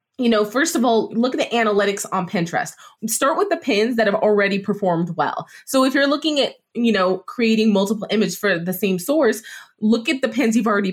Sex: female